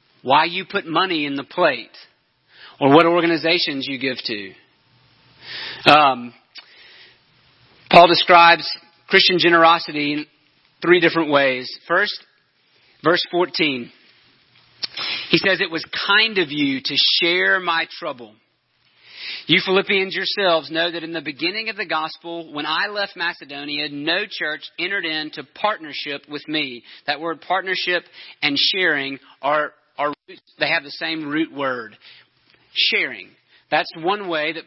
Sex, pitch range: male, 150-185 Hz